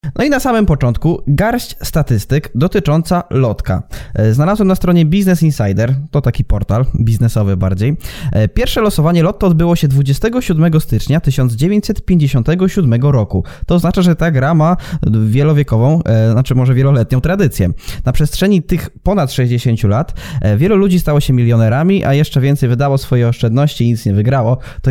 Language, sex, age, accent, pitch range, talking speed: Polish, male, 20-39, native, 115-165 Hz, 145 wpm